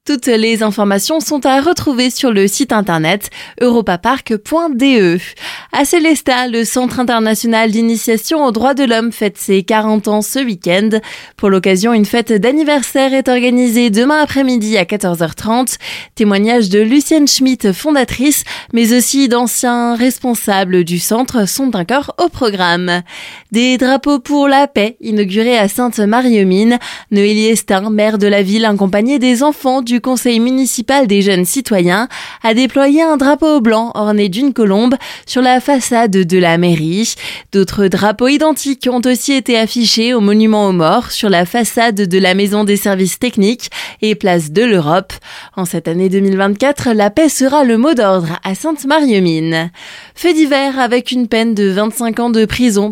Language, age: French, 20-39